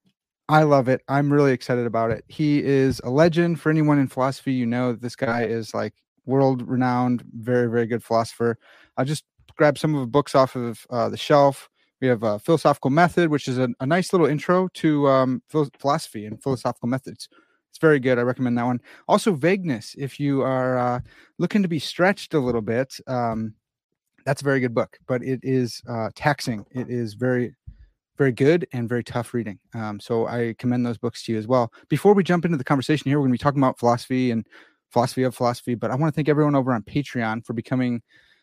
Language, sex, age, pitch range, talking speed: English, male, 30-49, 120-150 Hz, 215 wpm